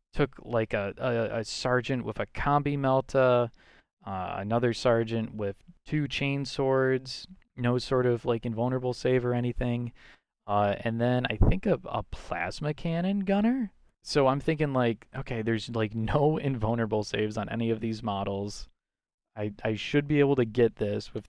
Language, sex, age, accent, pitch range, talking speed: English, male, 20-39, American, 110-130 Hz, 165 wpm